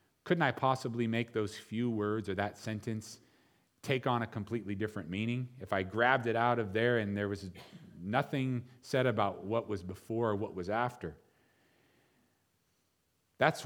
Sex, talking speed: male, 165 wpm